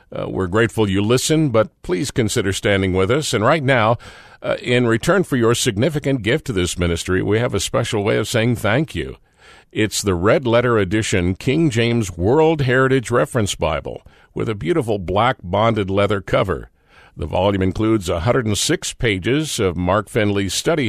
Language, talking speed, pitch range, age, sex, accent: English, 170 wpm, 90-120 Hz, 50-69, male, American